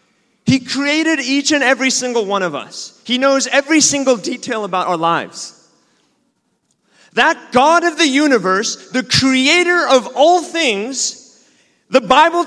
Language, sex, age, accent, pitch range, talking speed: English, male, 30-49, American, 205-275 Hz, 140 wpm